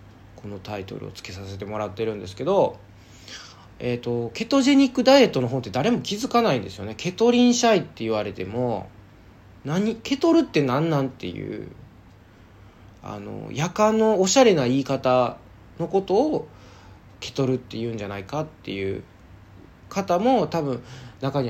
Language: Japanese